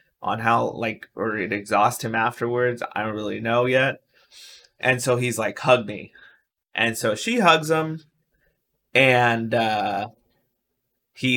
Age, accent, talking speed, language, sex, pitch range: 20-39, American, 140 wpm, English, male, 110-140 Hz